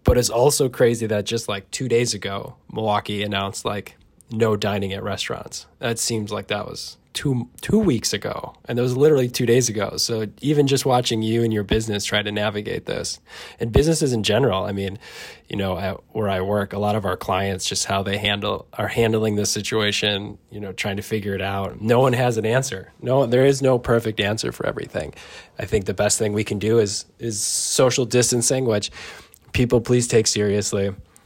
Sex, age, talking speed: male, 20-39, 205 wpm